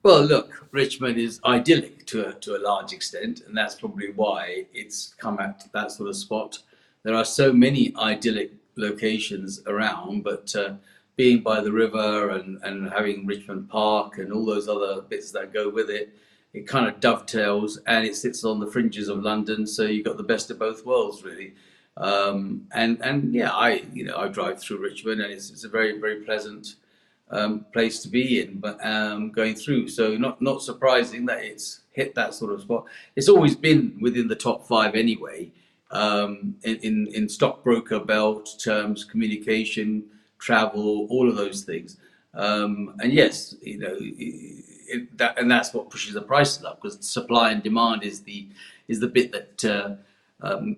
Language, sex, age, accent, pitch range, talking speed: English, male, 40-59, British, 105-125 Hz, 180 wpm